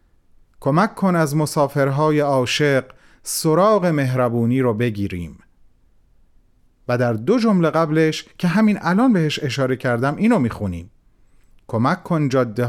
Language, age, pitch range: Persian, 40-59, 120-175 Hz